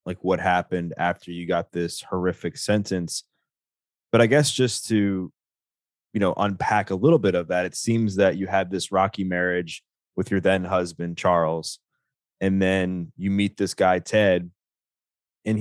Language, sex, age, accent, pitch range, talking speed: English, male, 20-39, American, 90-100 Hz, 165 wpm